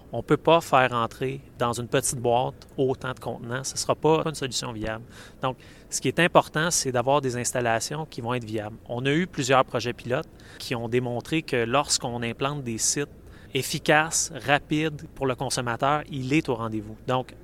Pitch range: 120-145 Hz